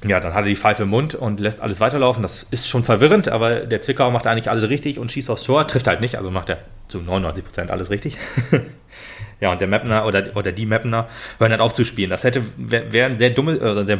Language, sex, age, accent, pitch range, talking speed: German, male, 30-49, German, 100-120 Hz, 240 wpm